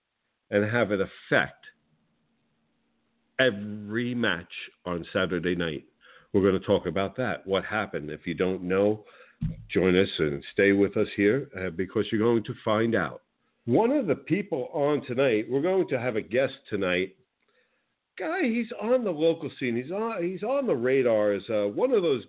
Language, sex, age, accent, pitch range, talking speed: English, male, 50-69, American, 110-145 Hz, 170 wpm